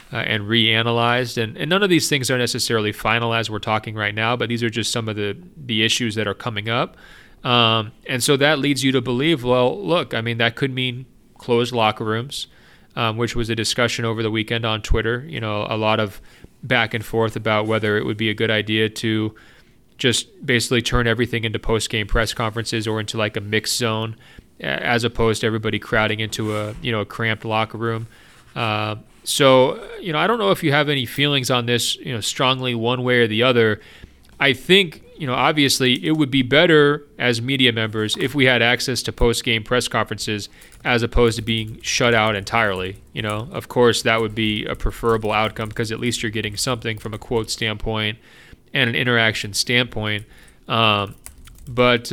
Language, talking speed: English, 205 wpm